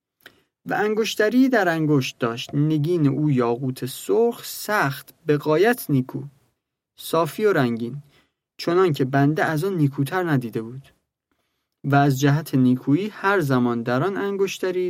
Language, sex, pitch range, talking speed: Persian, male, 135-185 Hz, 135 wpm